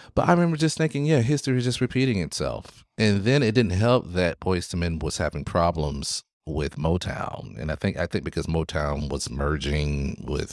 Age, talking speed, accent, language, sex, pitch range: 30-49, 200 wpm, American, English, male, 80-110 Hz